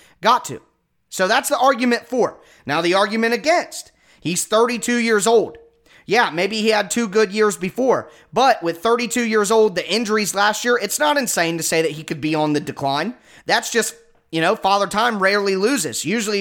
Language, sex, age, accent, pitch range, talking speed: English, male, 30-49, American, 165-225 Hz, 195 wpm